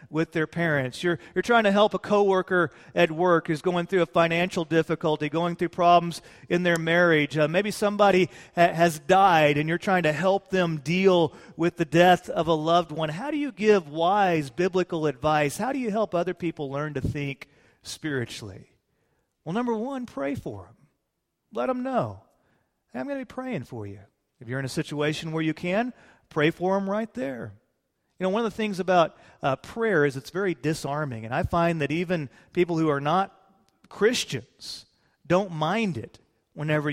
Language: English